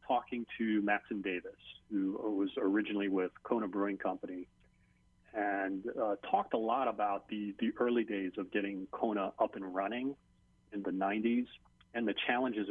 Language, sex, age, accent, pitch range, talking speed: English, male, 40-59, American, 95-115 Hz, 155 wpm